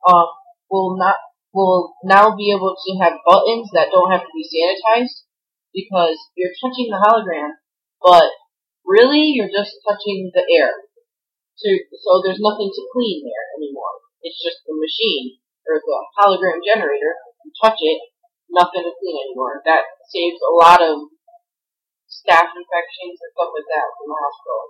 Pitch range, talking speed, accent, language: 180-270 Hz, 160 wpm, American, English